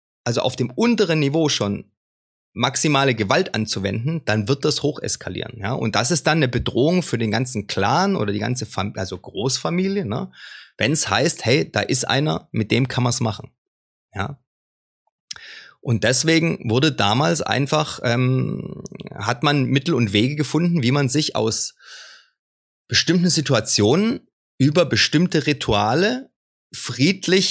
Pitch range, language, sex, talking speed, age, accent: 105-150 Hz, German, male, 150 wpm, 30-49, German